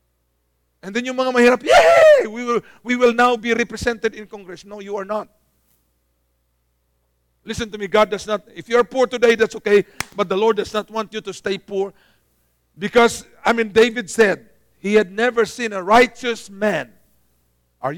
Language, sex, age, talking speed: English, male, 50-69, 185 wpm